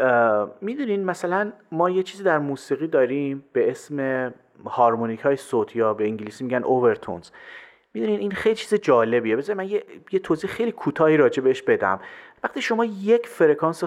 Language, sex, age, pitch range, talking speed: Persian, male, 30-49, 125-195 Hz, 160 wpm